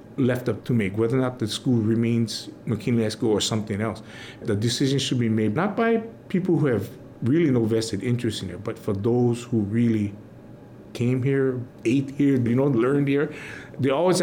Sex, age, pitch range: male, 50-69, 115-150 Hz